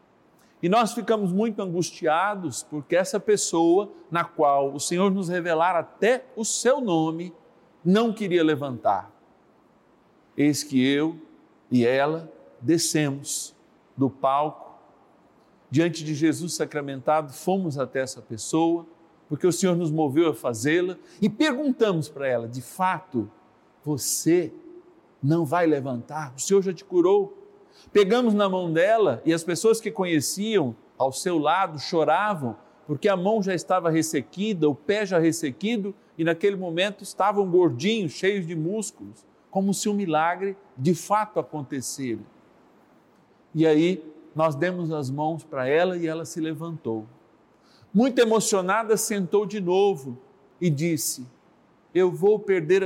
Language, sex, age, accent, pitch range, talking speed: Portuguese, male, 50-69, Brazilian, 150-200 Hz, 135 wpm